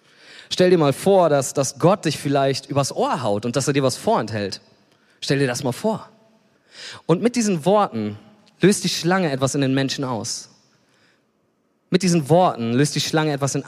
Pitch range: 135-170 Hz